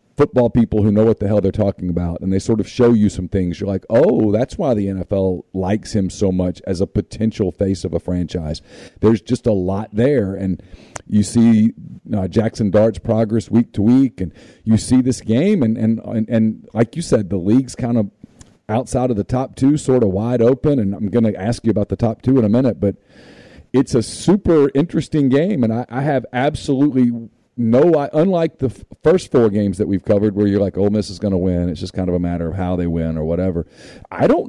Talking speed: 230 wpm